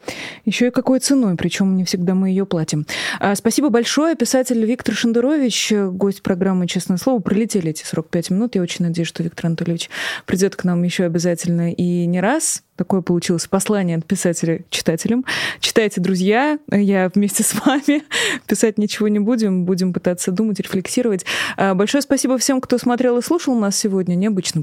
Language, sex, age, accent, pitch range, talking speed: Russian, female, 20-39, native, 175-225 Hz, 165 wpm